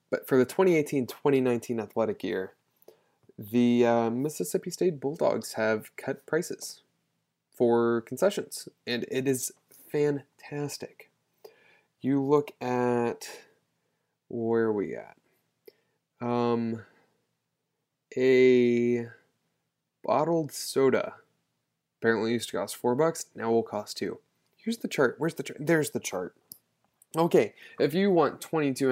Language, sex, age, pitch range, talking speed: English, male, 20-39, 115-140 Hz, 120 wpm